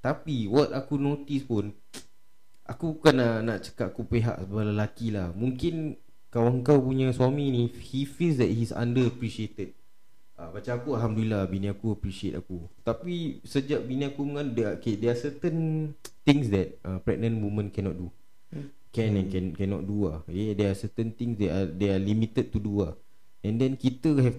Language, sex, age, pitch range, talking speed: Malay, male, 20-39, 95-125 Hz, 170 wpm